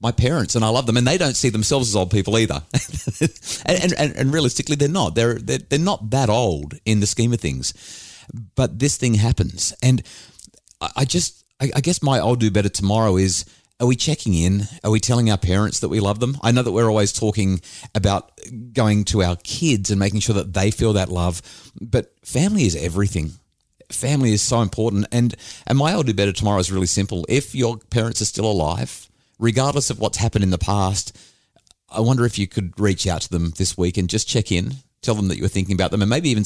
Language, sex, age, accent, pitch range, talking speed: English, male, 30-49, Australian, 95-115 Hz, 225 wpm